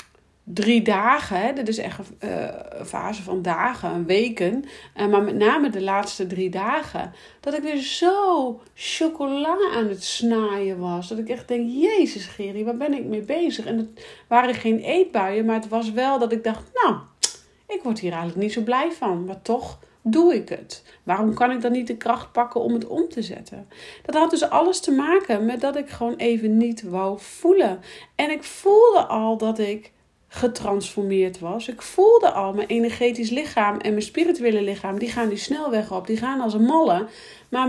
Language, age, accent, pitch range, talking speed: Dutch, 40-59, Dutch, 190-250 Hz, 195 wpm